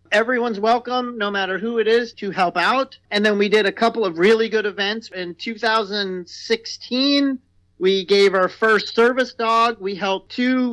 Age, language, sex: 40-59, English, male